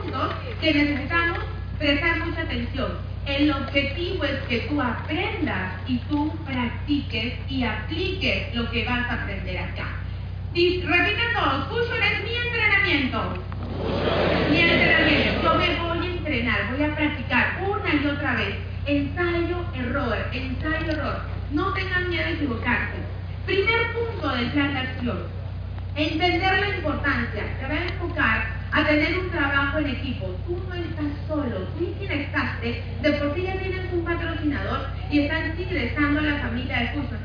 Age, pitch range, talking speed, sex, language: 40-59, 90-115 Hz, 150 wpm, female, Spanish